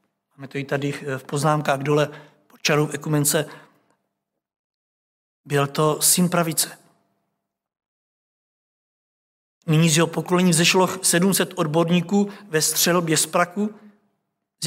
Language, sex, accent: Czech, male, native